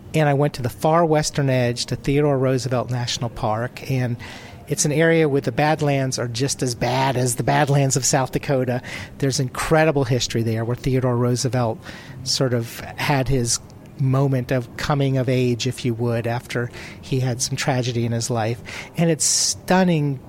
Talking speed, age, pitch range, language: 175 wpm, 40-59, 120-150 Hz, English